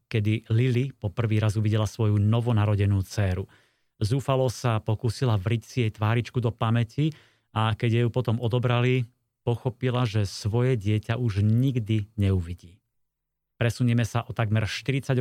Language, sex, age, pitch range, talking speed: Slovak, male, 30-49, 110-130 Hz, 140 wpm